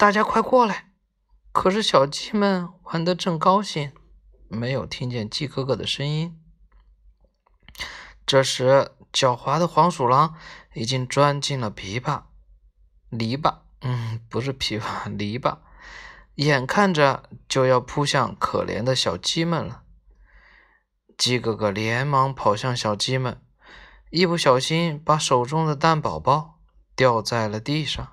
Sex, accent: male, native